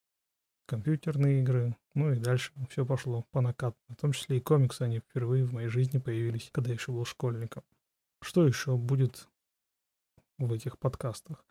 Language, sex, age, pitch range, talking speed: Russian, male, 20-39, 120-135 Hz, 160 wpm